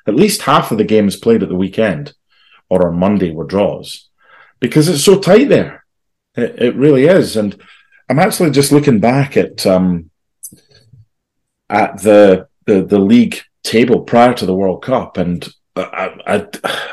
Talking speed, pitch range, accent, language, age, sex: 165 wpm, 95-130 Hz, British, English, 30-49, male